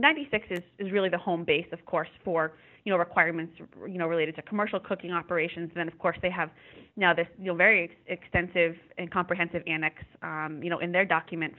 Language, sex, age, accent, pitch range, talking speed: English, female, 20-39, American, 170-205 Hz, 210 wpm